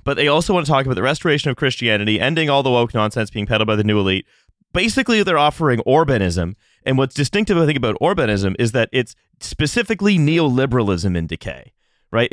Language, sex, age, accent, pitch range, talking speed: English, male, 30-49, American, 115-150 Hz, 200 wpm